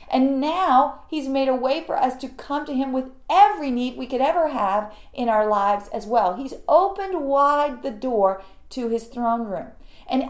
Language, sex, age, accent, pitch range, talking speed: English, female, 40-59, American, 225-300 Hz, 200 wpm